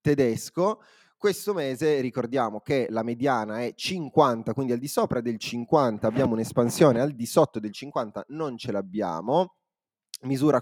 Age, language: 20-39, Italian